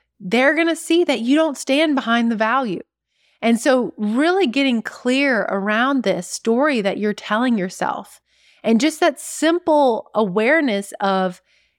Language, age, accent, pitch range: English, 30-49, American, 195-265 Hz